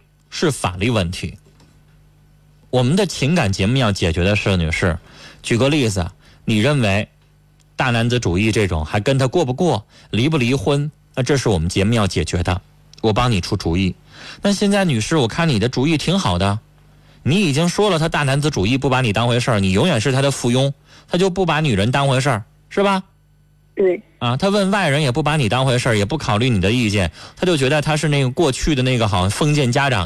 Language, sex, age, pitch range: Chinese, male, 20-39, 110-150 Hz